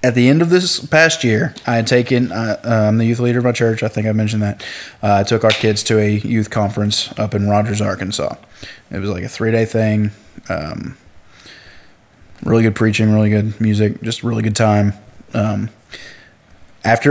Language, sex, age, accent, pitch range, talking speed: English, male, 20-39, American, 105-115 Hz, 195 wpm